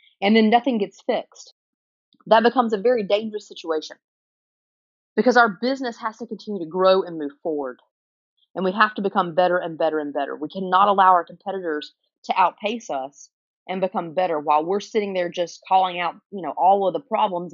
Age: 30-49